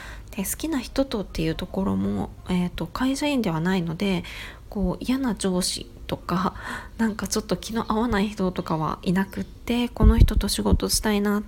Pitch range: 180-235 Hz